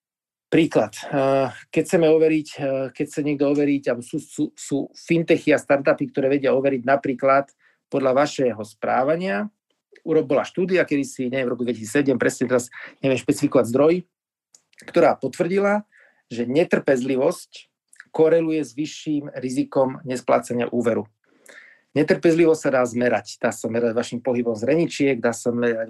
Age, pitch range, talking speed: 40-59, 125-150 Hz, 130 wpm